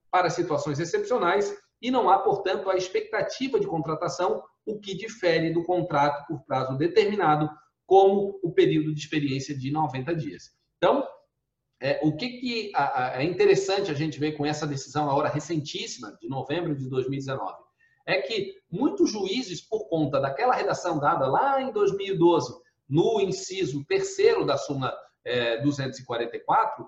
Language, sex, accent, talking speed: Portuguese, male, Brazilian, 150 wpm